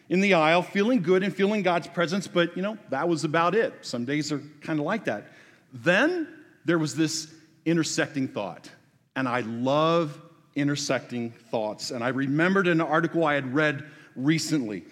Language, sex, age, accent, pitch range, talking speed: English, male, 40-59, American, 150-190 Hz, 175 wpm